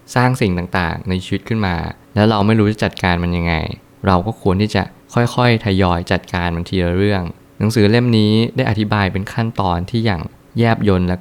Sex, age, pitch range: male, 20-39, 95-110 Hz